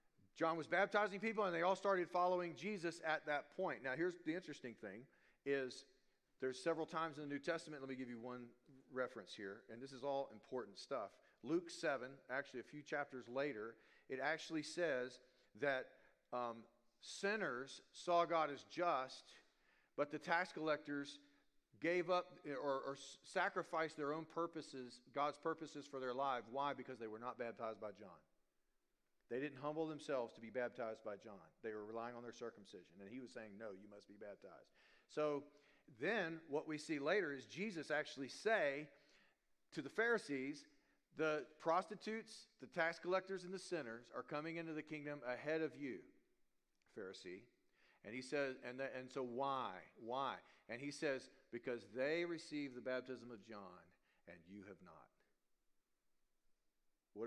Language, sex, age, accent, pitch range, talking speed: English, male, 40-59, American, 125-165 Hz, 165 wpm